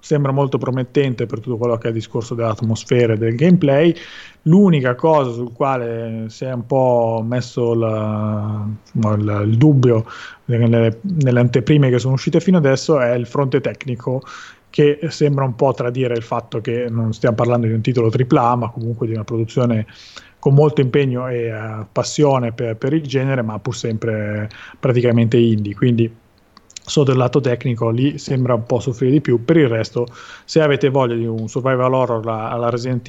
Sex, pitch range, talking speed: male, 115-140 Hz, 175 wpm